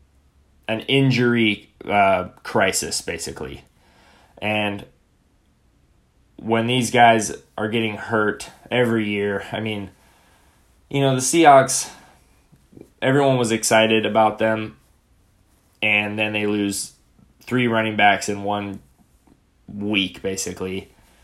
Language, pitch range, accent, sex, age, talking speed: English, 95-115 Hz, American, male, 10-29, 100 wpm